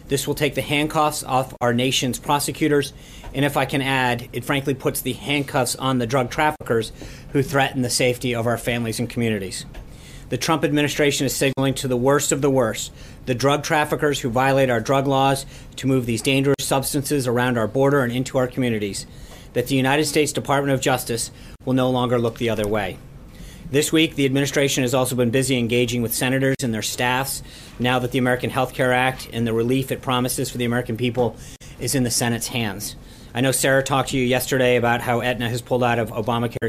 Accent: American